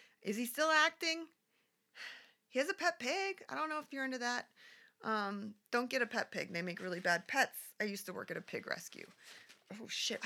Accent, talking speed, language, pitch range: American, 215 wpm, English, 185-265 Hz